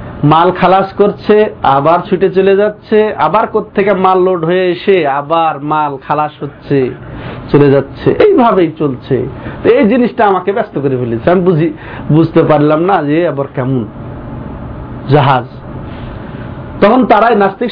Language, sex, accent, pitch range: Bengali, male, native, 145-225 Hz